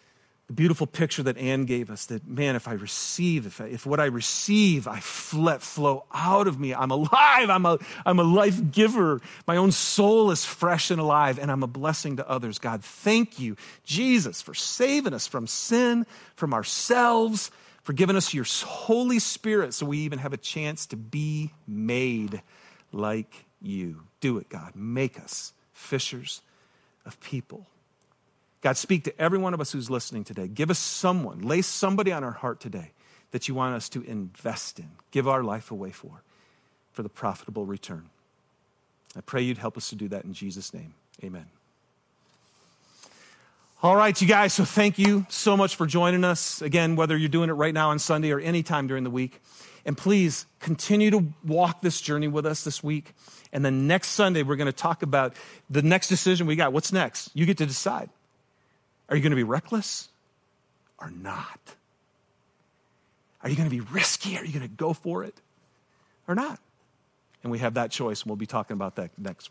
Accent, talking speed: American, 185 wpm